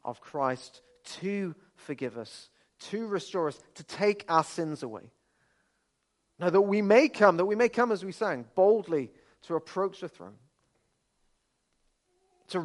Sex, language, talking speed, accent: male, English, 145 wpm, British